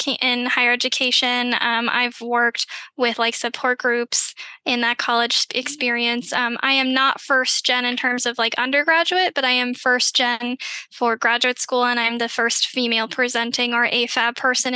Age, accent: 10-29, American